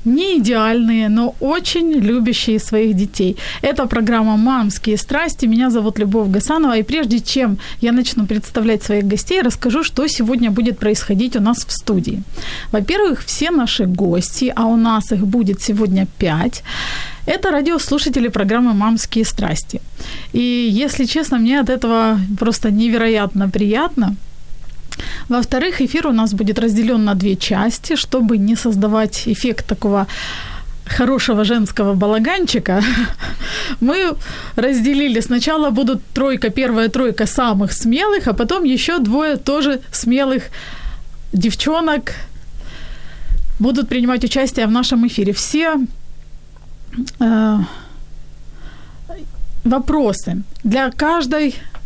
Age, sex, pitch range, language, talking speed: 30-49, female, 215-265 Hz, Ukrainian, 115 wpm